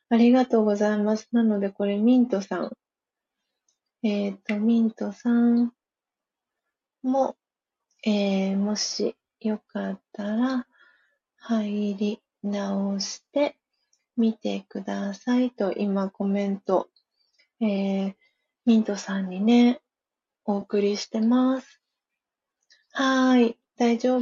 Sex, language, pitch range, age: female, Japanese, 200-250 Hz, 30-49